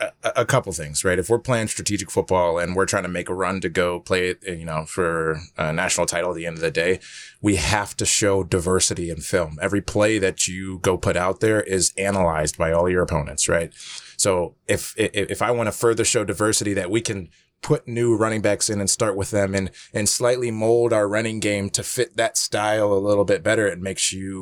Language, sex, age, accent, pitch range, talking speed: English, male, 20-39, American, 90-110 Hz, 230 wpm